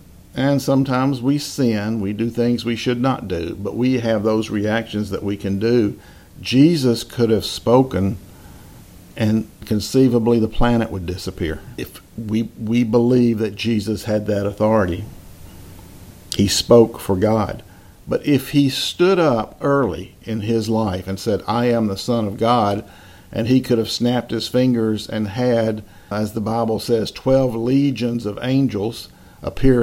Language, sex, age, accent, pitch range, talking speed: English, male, 50-69, American, 95-120 Hz, 155 wpm